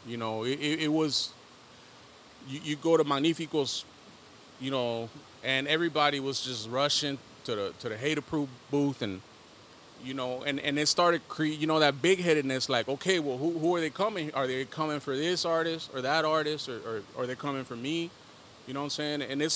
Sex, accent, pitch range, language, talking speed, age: male, American, 130-155 Hz, English, 200 wpm, 30-49